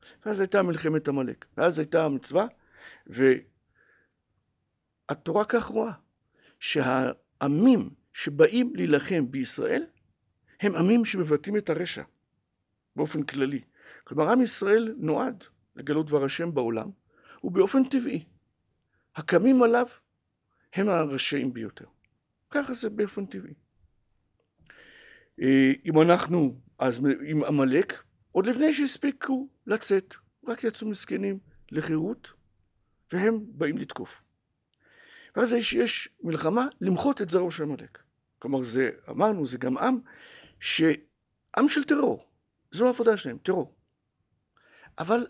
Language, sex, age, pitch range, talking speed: Hebrew, male, 60-79, 140-235 Hz, 105 wpm